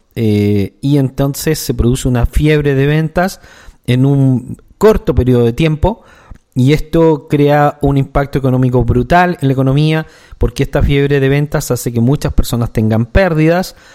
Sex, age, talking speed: male, 40-59, 155 wpm